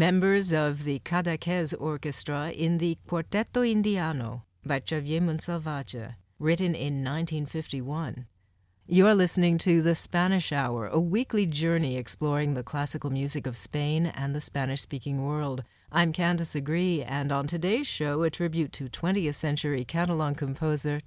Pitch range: 135-170 Hz